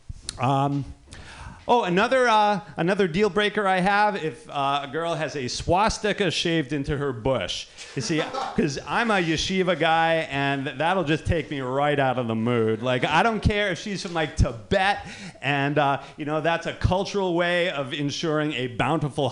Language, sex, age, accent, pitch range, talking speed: English, male, 40-59, American, 140-200 Hz, 180 wpm